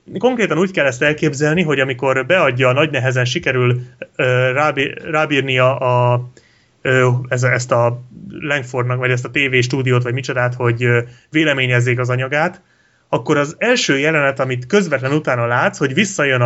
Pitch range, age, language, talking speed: 125-155 Hz, 30-49, Hungarian, 145 wpm